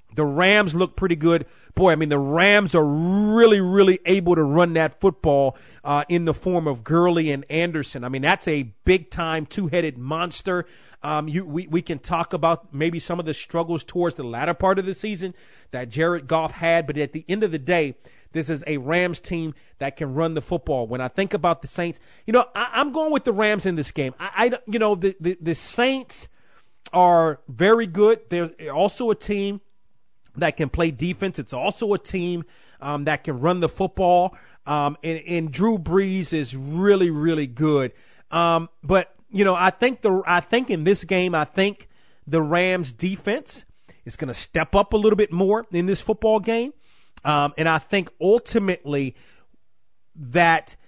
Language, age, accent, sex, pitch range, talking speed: English, 30-49, American, male, 155-195 Hz, 195 wpm